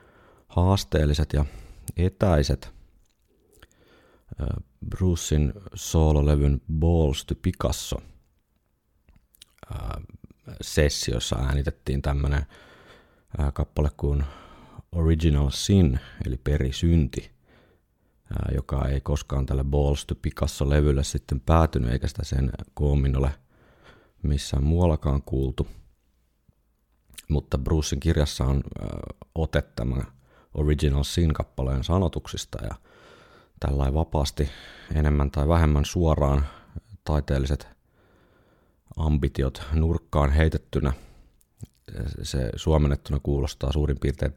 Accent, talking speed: native, 80 wpm